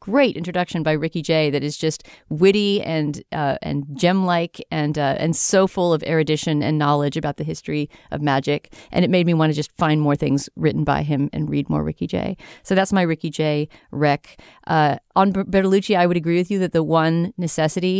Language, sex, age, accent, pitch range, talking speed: English, female, 40-59, American, 155-185 Hz, 210 wpm